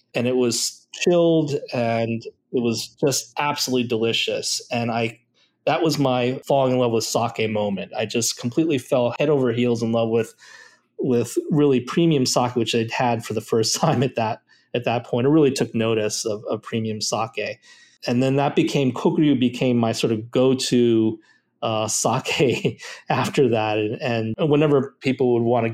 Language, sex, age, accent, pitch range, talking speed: English, male, 30-49, American, 110-130 Hz, 175 wpm